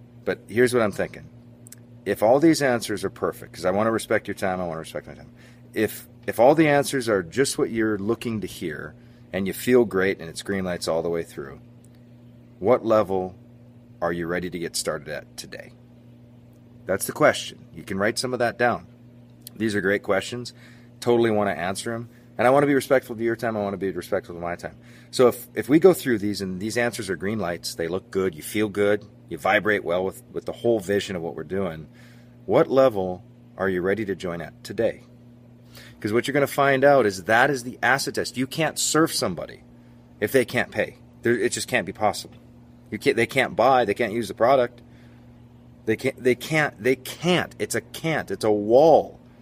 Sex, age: male, 40-59